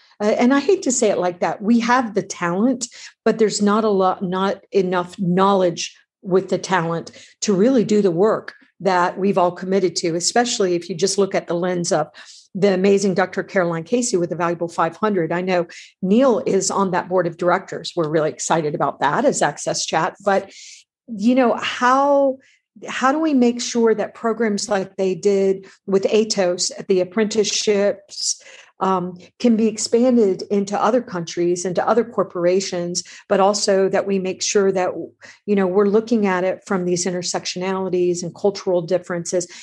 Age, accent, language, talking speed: 50-69, American, English, 175 wpm